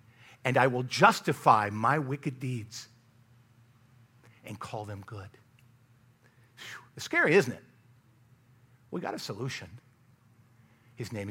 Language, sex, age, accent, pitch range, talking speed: English, male, 50-69, American, 120-150 Hz, 110 wpm